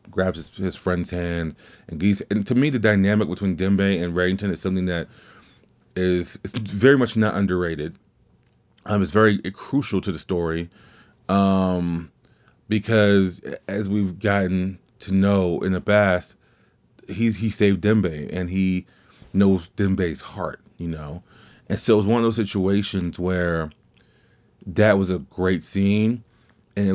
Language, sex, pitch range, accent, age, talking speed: English, male, 90-105 Hz, American, 30-49, 160 wpm